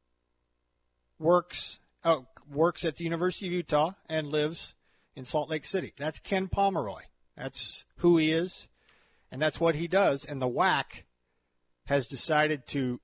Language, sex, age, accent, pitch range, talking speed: English, male, 50-69, American, 135-185 Hz, 145 wpm